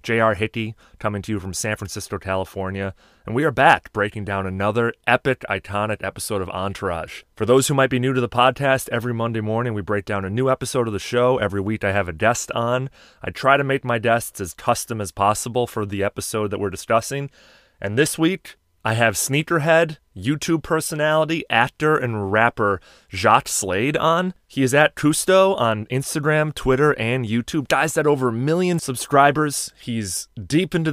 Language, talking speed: English, 190 wpm